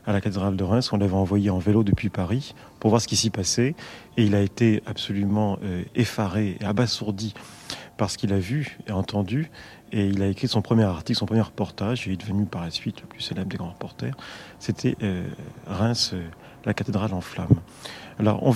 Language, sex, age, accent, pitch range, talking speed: French, male, 40-59, French, 100-120 Hz, 205 wpm